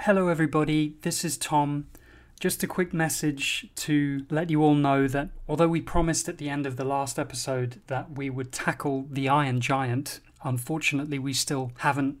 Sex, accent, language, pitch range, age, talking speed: male, British, English, 125-155 Hz, 30-49, 175 wpm